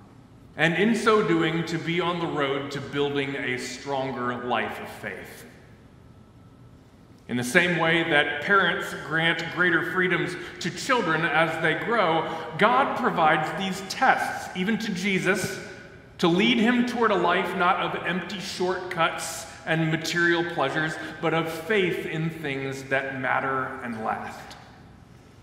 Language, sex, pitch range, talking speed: English, male, 135-175 Hz, 140 wpm